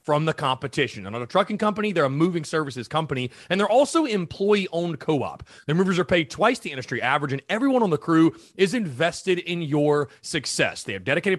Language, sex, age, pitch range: English, male, 30-49, 135-190 Hz